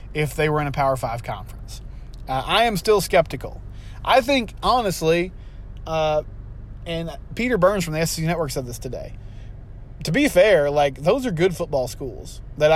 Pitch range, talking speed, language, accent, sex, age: 115-165 Hz, 175 wpm, English, American, male, 20-39